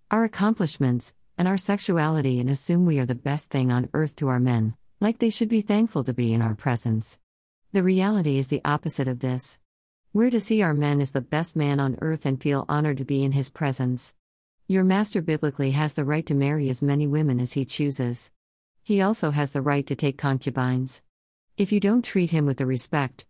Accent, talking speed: American, 215 wpm